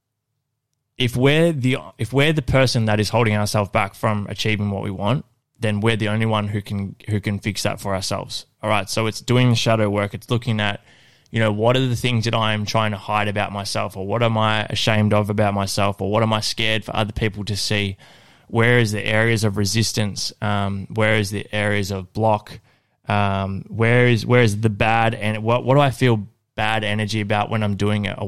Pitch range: 105-115 Hz